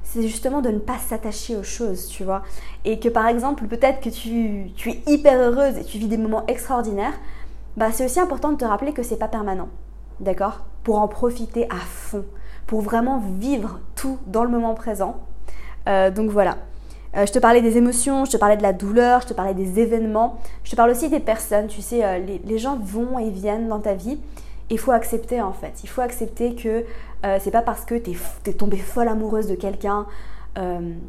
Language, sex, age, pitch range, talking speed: French, female, 20-39, 205-245 Hz, 220 wpm